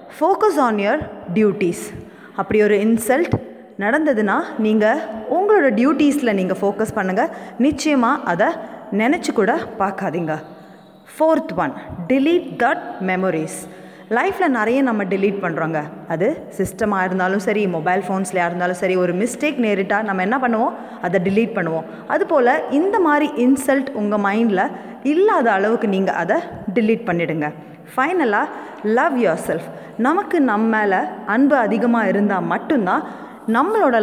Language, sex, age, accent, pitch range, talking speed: Tamil, female, 20-39, native, 190-265 Hz, 125 wpm